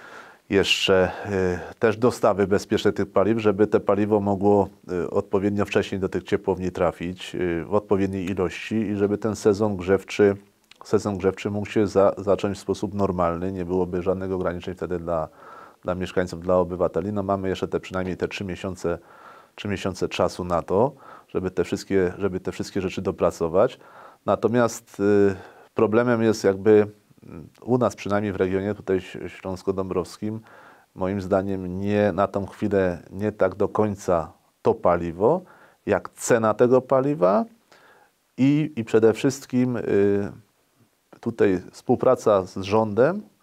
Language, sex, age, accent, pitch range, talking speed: Polish, male, 30-49, native, 95-115 Hz, 140 wpm